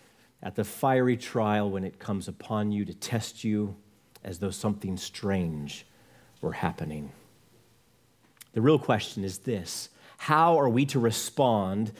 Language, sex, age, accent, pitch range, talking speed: English, male, 40-59, American, 105-140 Hz, 140 wpm